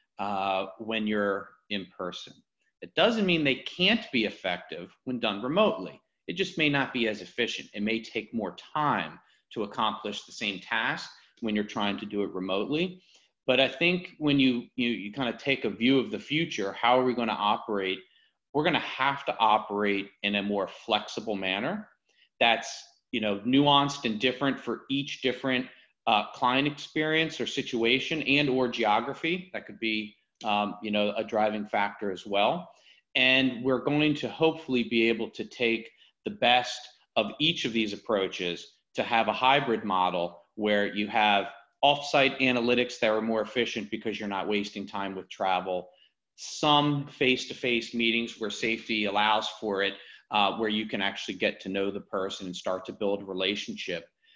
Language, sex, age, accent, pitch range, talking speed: English, male, 40-59, American, 105-135 Hz, 175 wpm